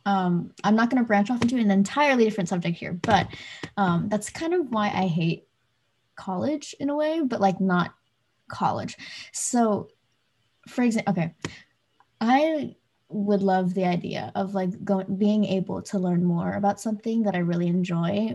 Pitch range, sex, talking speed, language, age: 180-215 Hz, female, 165 wpm, English, 20-39